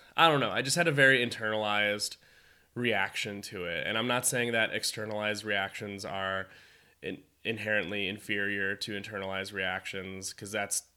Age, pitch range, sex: 20-39, 100-120 Hz, male